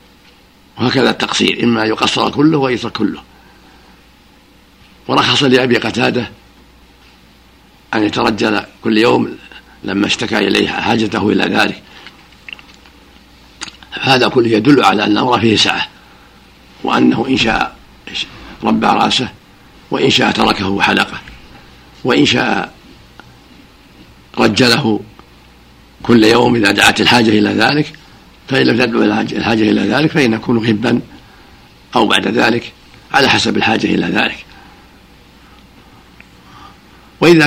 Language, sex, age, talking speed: Arabic, male, 60-79, 105 wpm